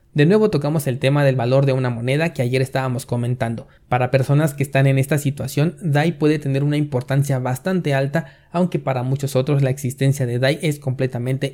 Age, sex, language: 30-49, male, Spanish